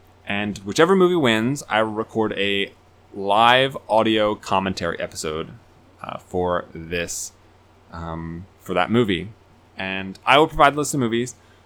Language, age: English, 20-39